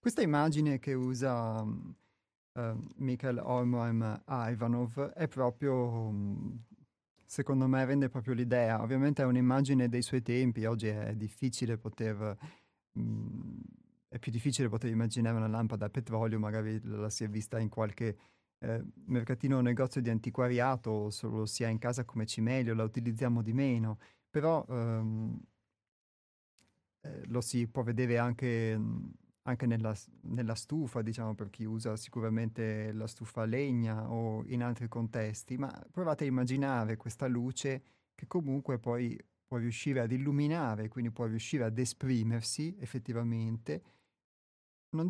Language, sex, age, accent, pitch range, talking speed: Italian, male, 30-49, native, 110-130 Hz, 140 wpm